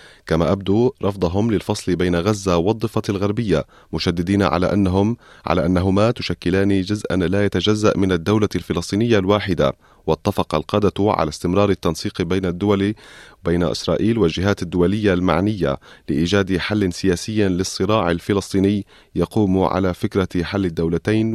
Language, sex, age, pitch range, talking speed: Arabic, male, 30-49, 90-105 Hz, 120 wpm